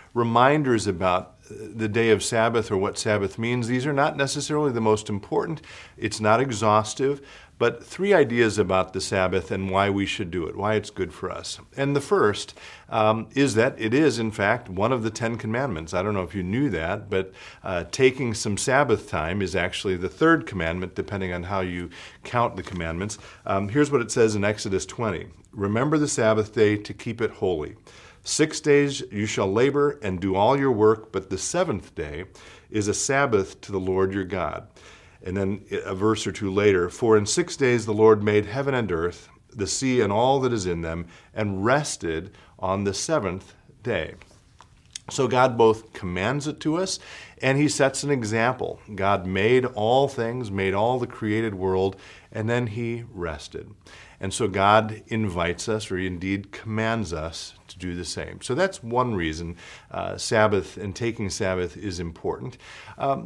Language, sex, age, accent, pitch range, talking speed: English, male, 50-69, American, 95-125 Hz, 185 wpm